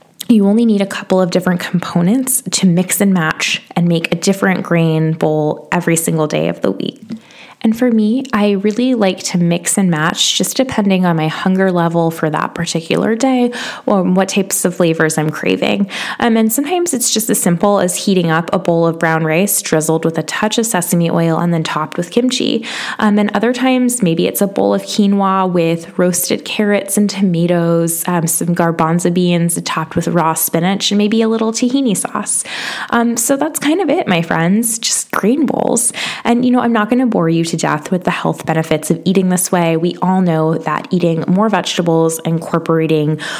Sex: female